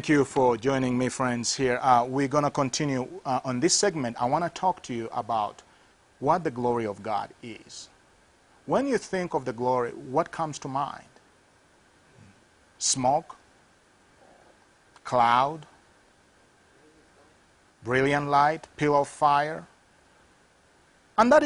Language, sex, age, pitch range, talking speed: English, male, 40-59, 130-180 Hz, 135 wpm